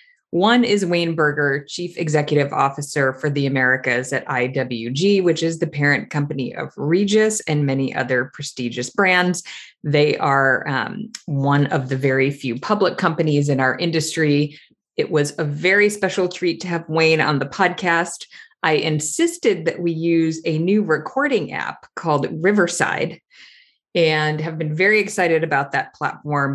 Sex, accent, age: female, American, 30-49